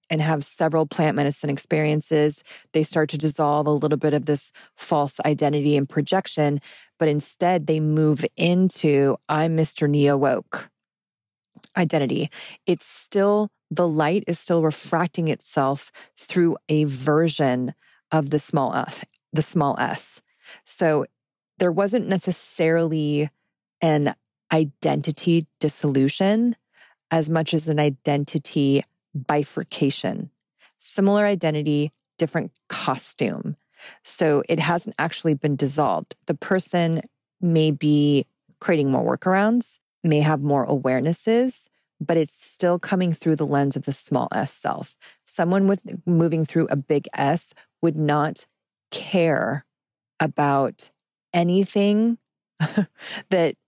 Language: English